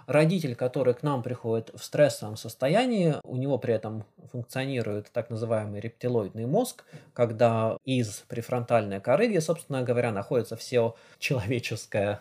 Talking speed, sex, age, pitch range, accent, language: 130 wpm, male, 20-39, 110-135 Hz, native, Russian